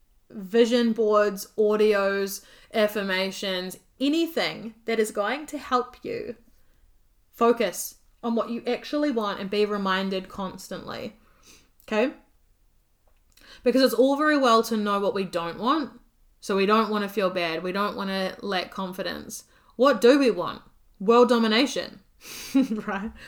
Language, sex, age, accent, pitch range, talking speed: English, female, 20-39, Australian, 195-245 Hz, 135 wpm